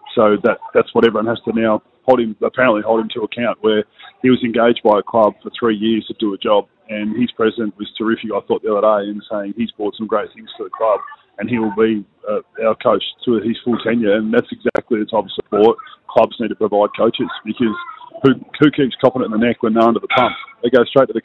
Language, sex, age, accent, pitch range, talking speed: English, male, 20-39, Australian, 110-125 Hz, 255 wpm